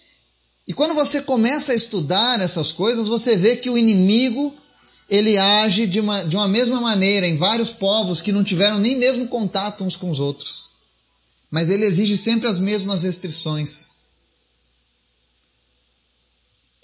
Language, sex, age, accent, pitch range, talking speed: Portuguese, male, 30-49, Brazilian, 150-225 Hz, 150 wpm